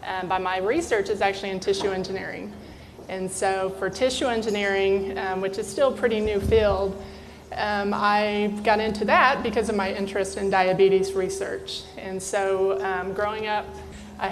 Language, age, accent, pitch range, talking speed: English, 20-39, American, 190-210 Hz, 165 wpm